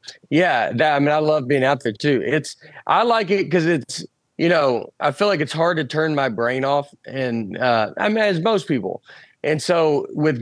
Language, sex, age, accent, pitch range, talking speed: English, male, 30-49, American, 125-155 Hz, 220 wpm